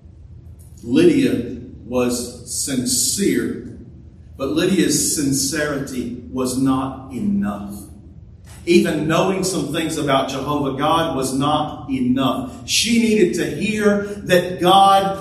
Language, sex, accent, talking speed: English, male, American, 100 wpm